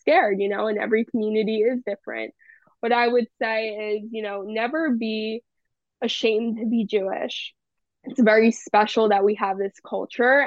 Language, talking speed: English, 165 wpm